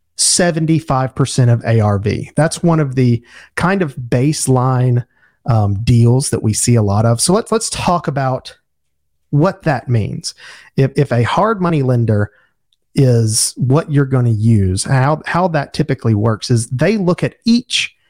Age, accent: 40-59, American